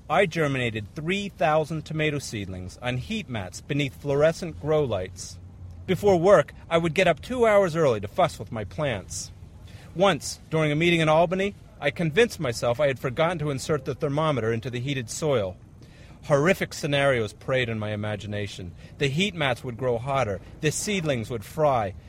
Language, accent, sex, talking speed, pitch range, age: English, American, male, 170 wpm, 110-165 Hz, 40-59